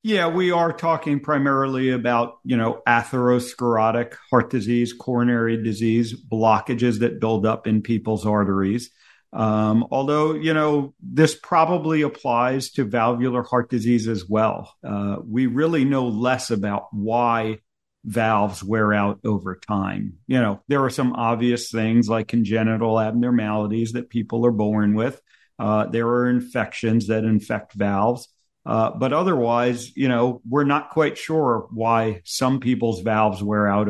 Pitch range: 110-130 Hz